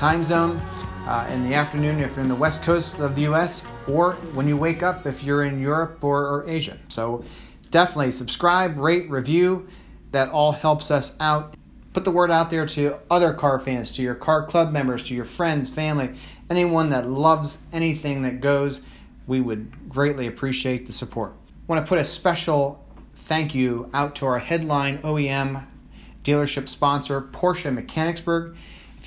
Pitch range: 130-155 Hz